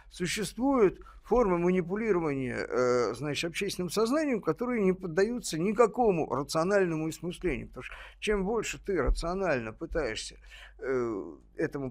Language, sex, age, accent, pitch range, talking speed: Russian, male, 50-69, native, 155-230 Hz, 100 wpm